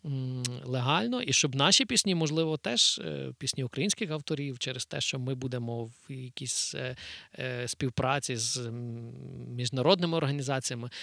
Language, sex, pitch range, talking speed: Ukrainian, male, 125-150 Hz, 115 wpm